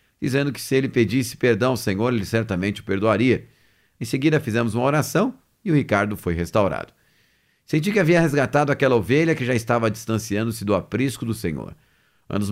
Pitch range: 110-145 Hz